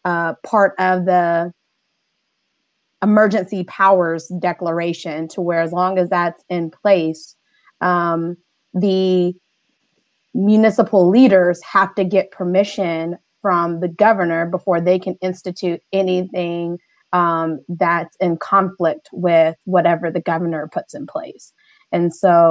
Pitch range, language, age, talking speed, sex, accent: 170-195 Hz, English, 20-39, 115 wpm, female, American